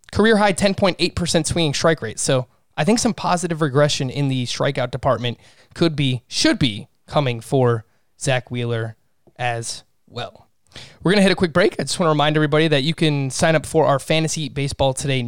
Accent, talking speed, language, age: American, 195 wpm, English, 20-39